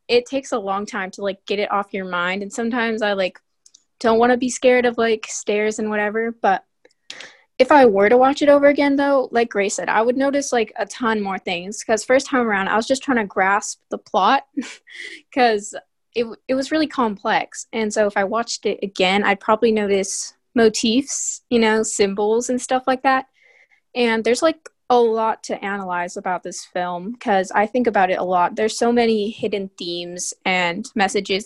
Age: 20-39